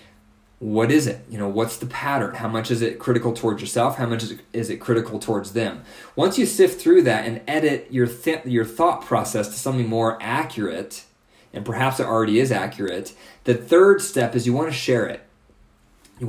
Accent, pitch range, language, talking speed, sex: American, 110-130 Hz, English, 205 wpm, male